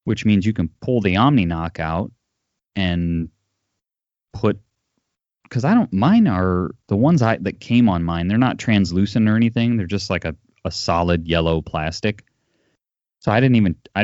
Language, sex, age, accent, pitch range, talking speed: English, male, 30-49, American, 85-105 Hz, 170 wpm